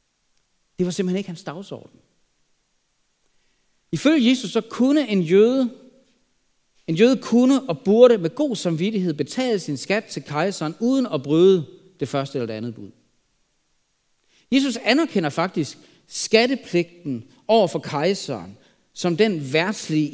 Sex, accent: male, native